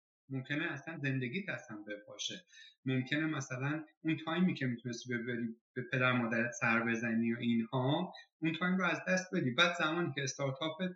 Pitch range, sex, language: 120-160 Hz, male, Persian